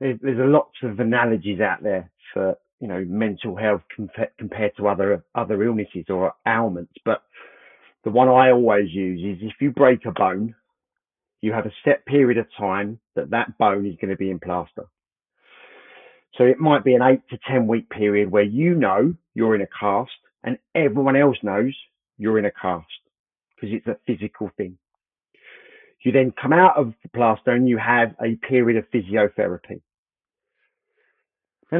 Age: 40-59